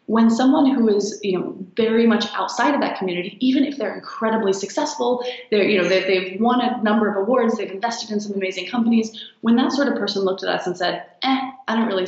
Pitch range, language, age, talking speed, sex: 185-230 Hz, English, 20-39, 230 wpm, female